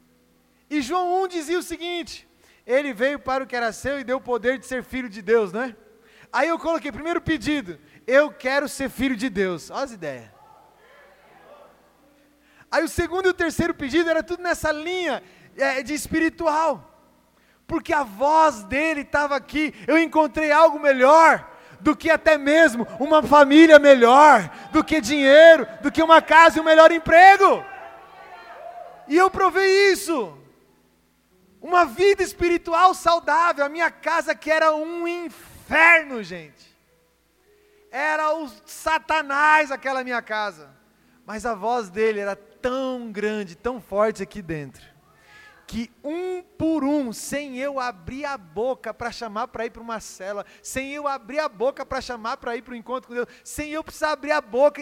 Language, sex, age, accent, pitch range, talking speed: Portuguese, male, 20-39, Brazilian, 230-315 Hz, 160 wpm